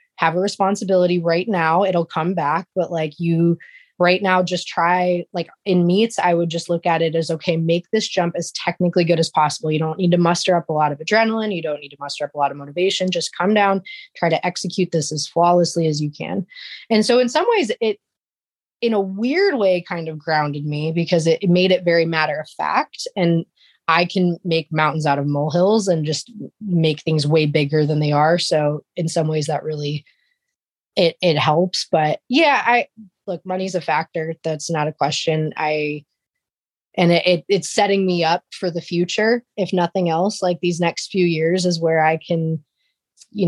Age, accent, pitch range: 20-39, American, 155-185 Hz